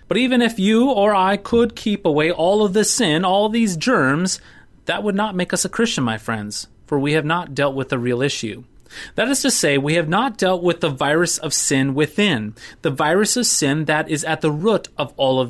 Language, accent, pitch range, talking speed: English, American, 135-200 Hz, 230 wpm